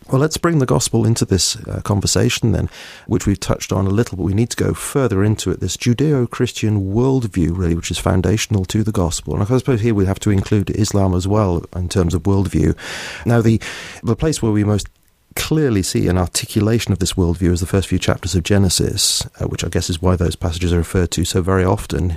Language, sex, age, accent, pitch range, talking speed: English, male, 40-59, British, 90-115 Hz, 225 wpm